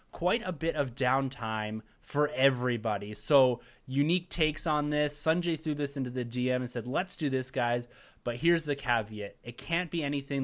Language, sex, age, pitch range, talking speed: English, male, 20-39, 120-150 Hz, 185 wpm